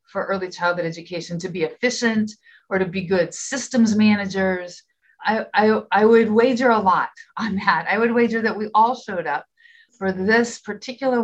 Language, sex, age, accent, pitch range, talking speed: English, female, 40-59, American, 185-235 Hz, 175 wpm